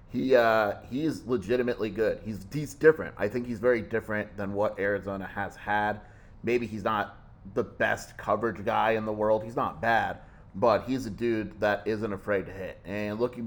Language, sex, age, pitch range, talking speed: English, male, 30-49, 95-110 Hz, 185 wpm